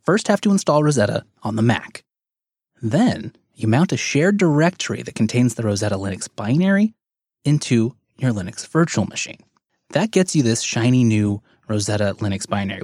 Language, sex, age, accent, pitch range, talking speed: English, male, 20-39, American, 110-170 Hz, 160 wpm